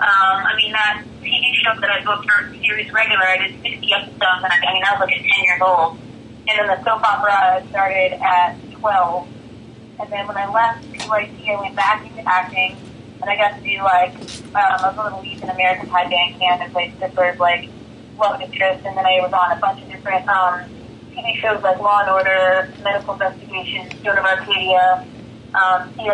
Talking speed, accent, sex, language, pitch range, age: 200 wpm, American, female, English, 185-215 Hz, 20-39